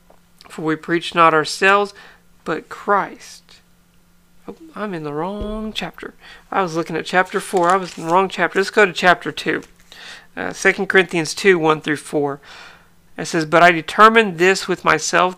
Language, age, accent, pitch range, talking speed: English, 40-59, American, 155-195 Hz, 170 wpm